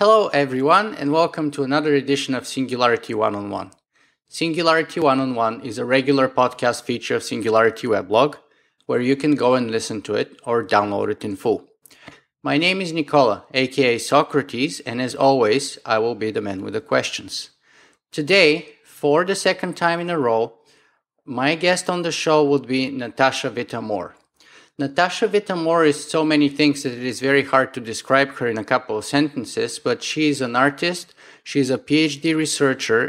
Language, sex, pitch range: English, male, 125-155 Hz